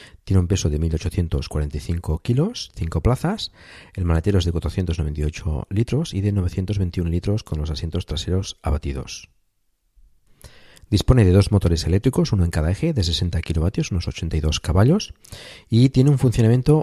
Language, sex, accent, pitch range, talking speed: Spanish, male, Spanish, 85-105 Hz, 150 wpm